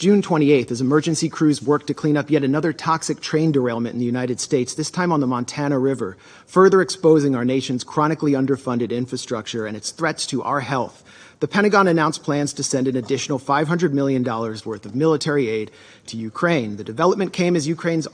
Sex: male